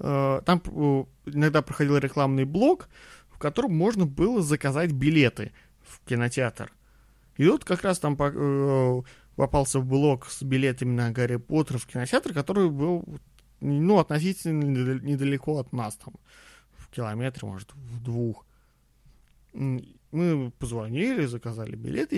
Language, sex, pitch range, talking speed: Russian, male, 130-155 Hz, 120 wpm